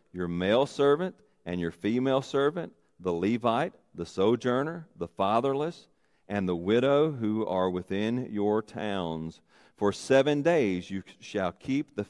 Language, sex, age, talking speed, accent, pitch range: English, male, 40-59, 140 wpm, American, 85-115 Hz